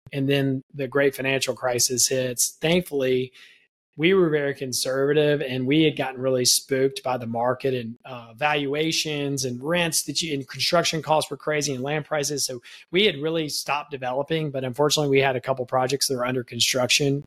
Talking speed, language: 185 wpm, English